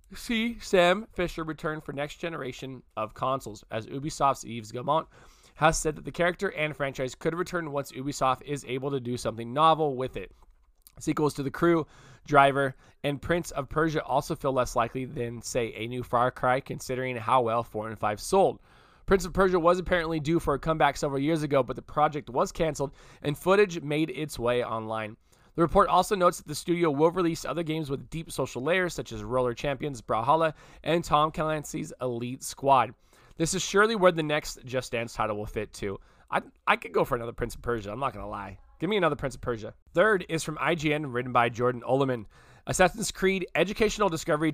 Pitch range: 120-160 Hz